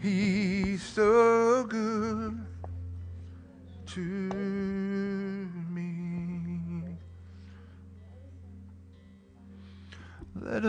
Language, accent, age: English, American, 50-69